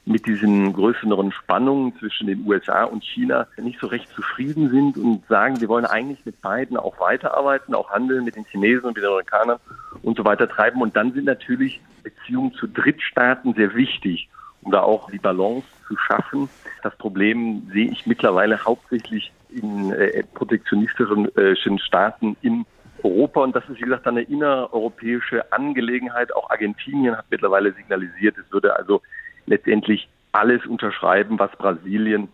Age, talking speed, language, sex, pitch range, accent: 50-69, 155 wpm, German, male, 105-125 Hz, German